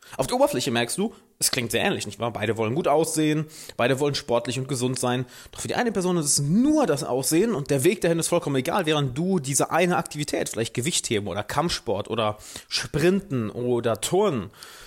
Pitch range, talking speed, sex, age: 125-165 Hz, 205 wpm, male, 30-49